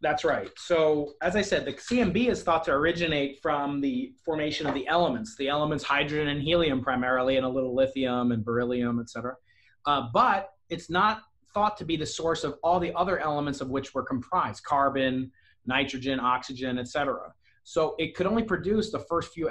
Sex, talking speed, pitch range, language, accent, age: male, 185 wpm, 130-160 Hz, English, American, 30-49